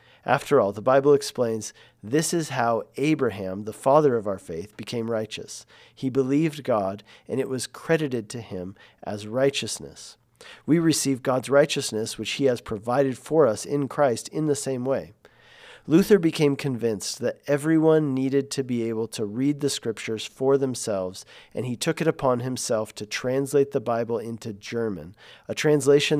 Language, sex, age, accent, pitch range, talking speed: English, male, 40-59, American, 115-145 Hz, 165 wpm